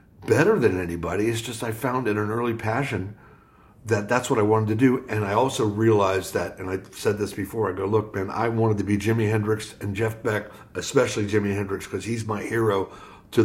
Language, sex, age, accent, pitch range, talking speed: English, male, 60-79, American, 100-115 Hz, 220 wpm